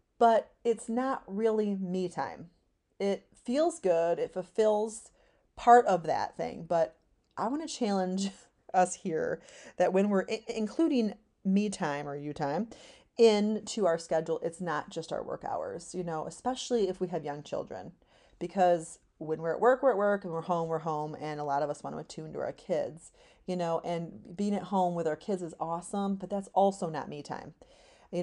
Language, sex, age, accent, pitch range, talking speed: English, female, 30-49, American, 165-210 Hz, 190 wpm